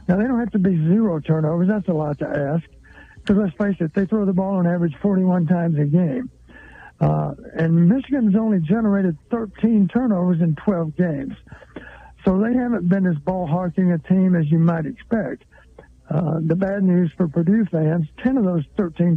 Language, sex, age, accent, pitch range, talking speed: English, male, 60-79, American, 165-200 Hz, 190 wpm